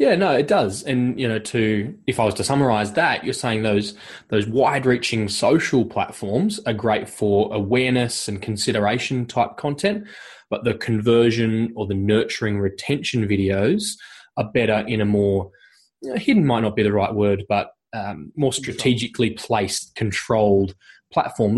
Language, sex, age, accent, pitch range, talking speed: English, male, 20-39, Australian, 105-135 Hz, 160 wpm